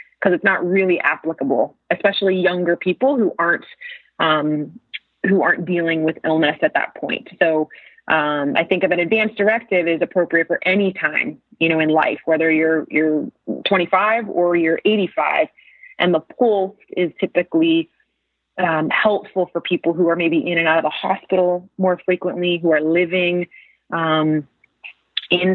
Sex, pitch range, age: female, 160-185 Hz, 30-49